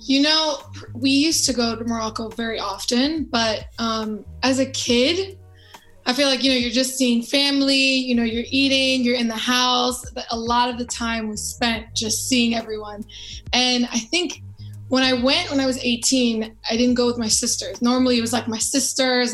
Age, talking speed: 20-39, 200 wpm